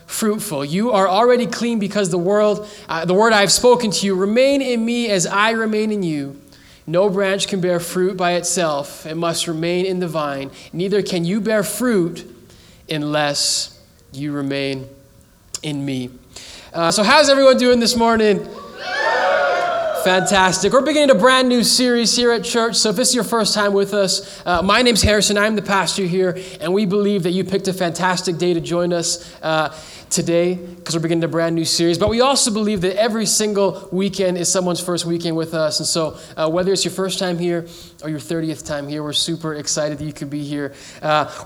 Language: English